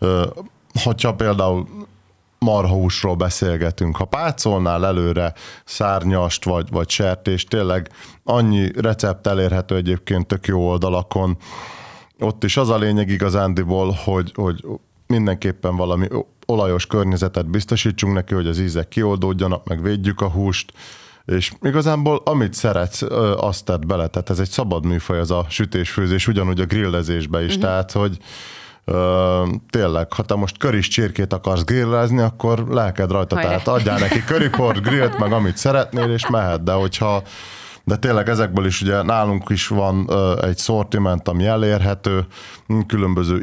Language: Hungarian